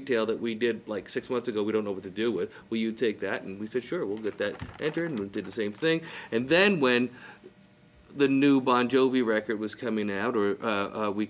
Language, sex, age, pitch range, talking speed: English, male, 40-59, 105-130 Hz, 255 wpm